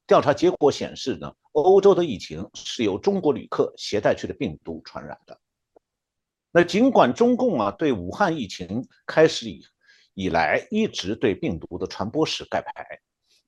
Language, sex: Chinese, male